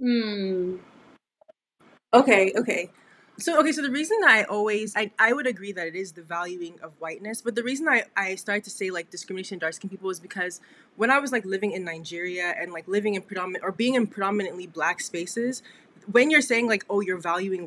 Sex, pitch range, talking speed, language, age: female, 180-240 Hz, 205 wpm, English, 20-39